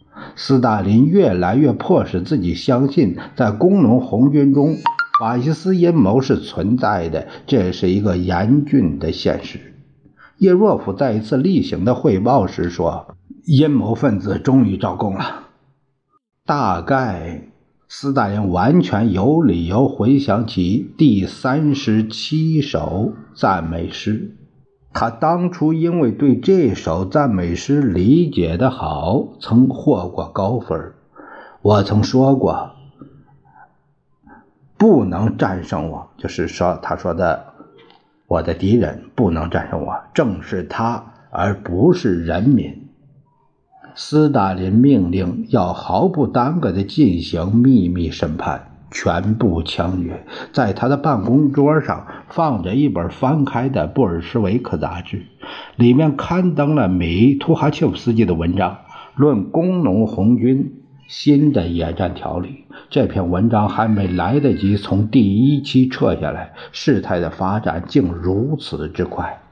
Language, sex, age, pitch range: Chinese, male, 60-79, 95-140 Hz